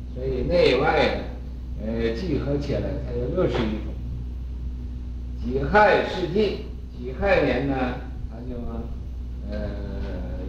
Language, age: Chinese, 50-69